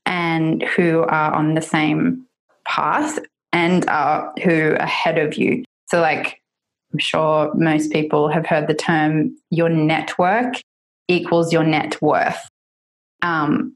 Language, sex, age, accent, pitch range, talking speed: English, female, 20-39, Australian, 155-185 Hz, 135 wpm